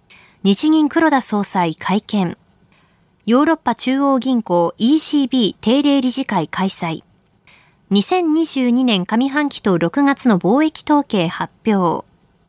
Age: 20-39